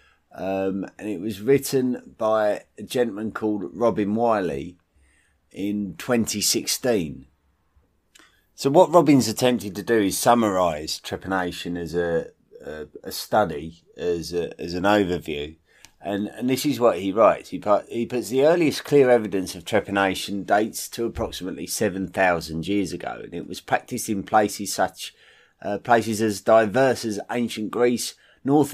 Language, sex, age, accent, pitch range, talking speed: English, male, 30-49, British, 95-135 Hz, 140 wpm